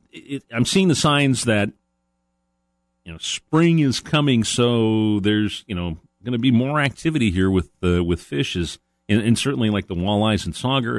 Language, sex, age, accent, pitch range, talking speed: English, male, 40-59, American, 85-115 Hz, 180 wpm